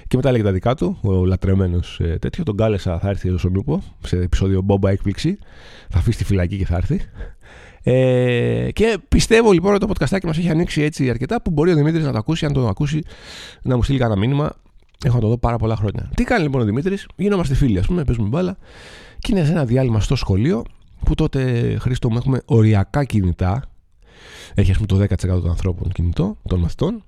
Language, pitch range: Greek, 95-150 Hz